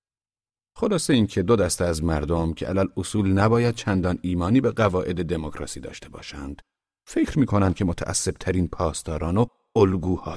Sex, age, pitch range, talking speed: male, 40-59, 80-105 Hz, 150 wpm